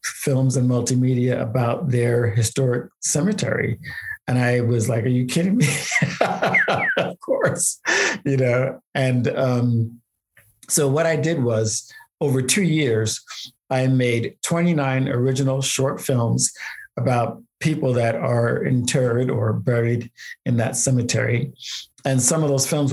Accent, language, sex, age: American, English, male, 50-69